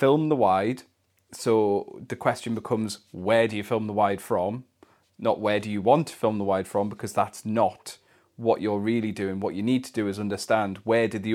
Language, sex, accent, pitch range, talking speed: English, male, British, 100-125 Hz, 215 wpm